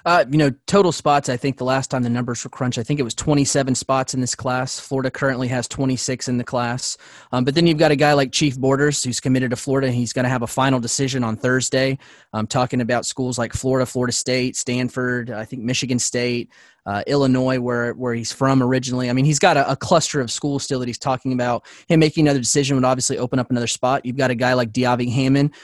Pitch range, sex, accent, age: 125-140 Hz, male, American, 20-39